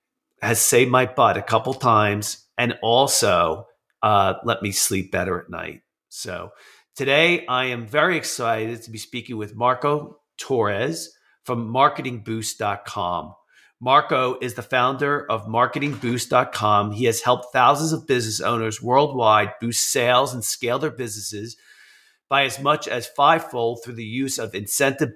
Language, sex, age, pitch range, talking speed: English, male, 40-59, 110-135 Hz, 145 wpm